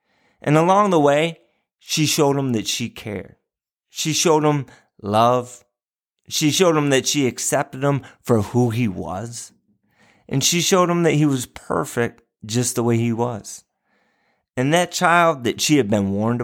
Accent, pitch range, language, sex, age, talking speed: American, 110-145 Hz, English, male, 30-49, 170 wpm